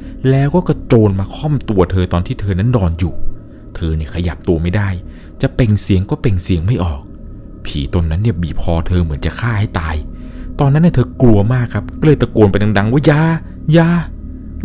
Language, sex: Thai, male